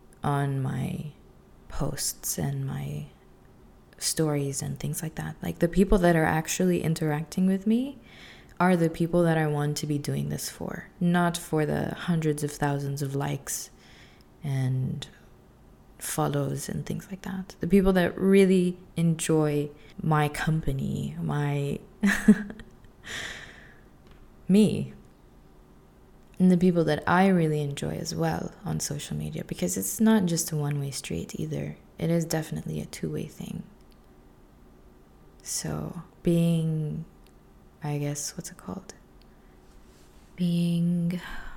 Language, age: English, 20-39